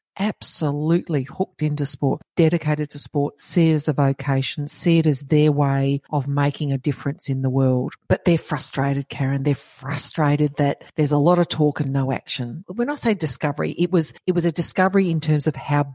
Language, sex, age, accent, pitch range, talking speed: English, female, 40-59, Australian, 135-165 Hz, 205 wpm